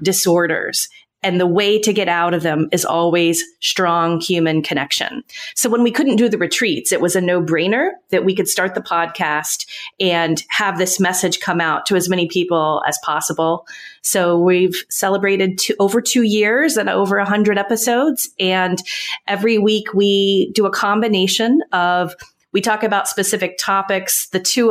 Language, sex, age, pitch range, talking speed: English, female, 30-49, 180-215 Hz, 165 wpm